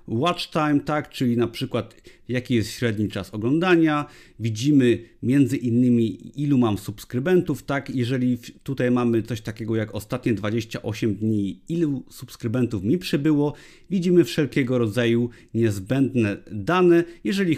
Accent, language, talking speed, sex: native, Polish, 125 wpm, male